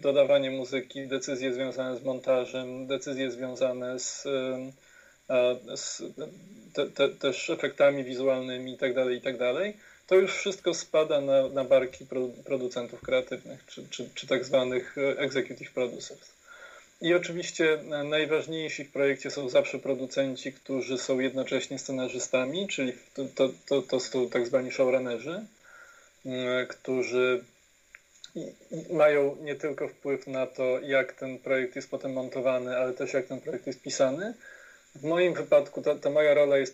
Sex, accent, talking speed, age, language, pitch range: male, native, 135 wpm, 20-39, Polish, 130-155 Hz